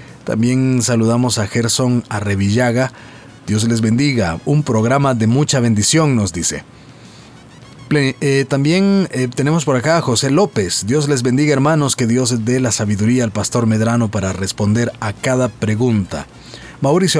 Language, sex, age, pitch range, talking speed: Spanish, male, 40-59, 115-150 Hz, 140 wpm